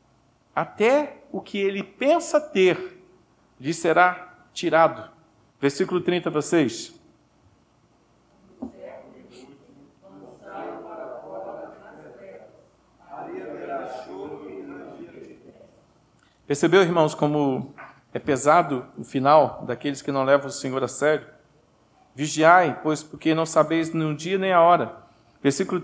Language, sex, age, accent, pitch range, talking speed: Portuguese, male, 50-69, Brazilian, 150-195 Hz, 90 wpm